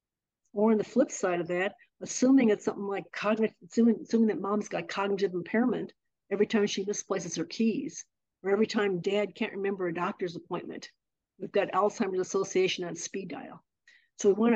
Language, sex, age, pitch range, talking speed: English, female, 60-79, 185-220 Hz, 180 wpm